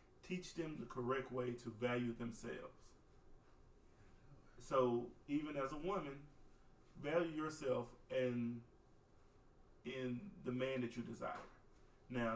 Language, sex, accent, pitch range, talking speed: English, male, American, 125-185 Hz, 110 wpm